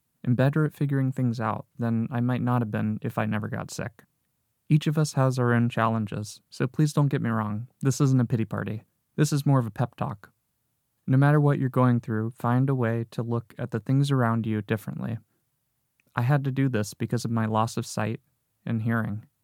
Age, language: 20-39, English